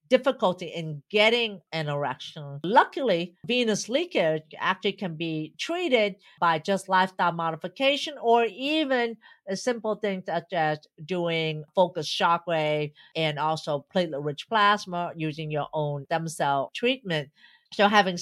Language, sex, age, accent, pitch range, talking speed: English, female, 50-69, American, 165-225 Hz, 125 wpm